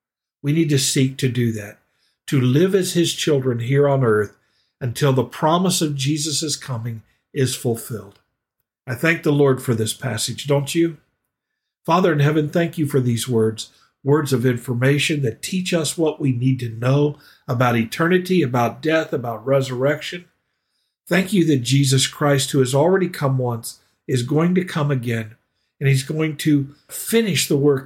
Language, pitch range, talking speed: English, 125-150 Hz, 170 wpm